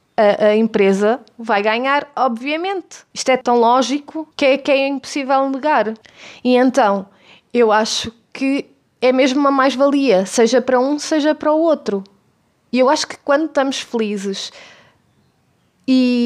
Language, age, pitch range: Portuguese, 20-39, 215-275 Hz